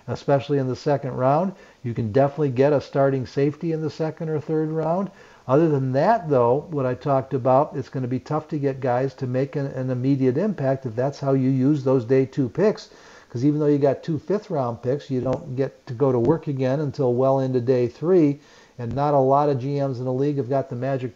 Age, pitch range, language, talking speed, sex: 50-69, 130-155 Hz, English, 235 wpm, male